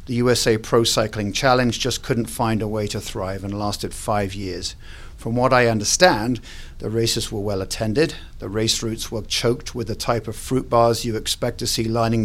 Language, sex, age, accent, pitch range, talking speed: English, male, 50-69, British, 100-120 Hz, 200 wpm